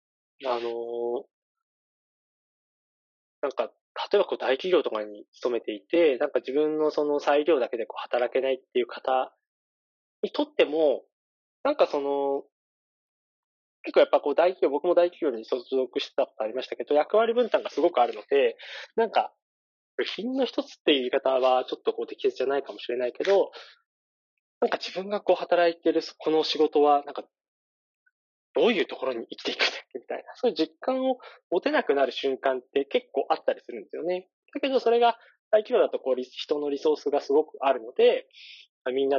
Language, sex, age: Japanese, male, 20-39